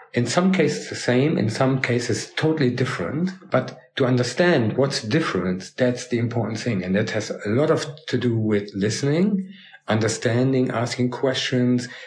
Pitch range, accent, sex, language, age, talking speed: 105-130 Hz, German, male, German, 50-69, 155 wpm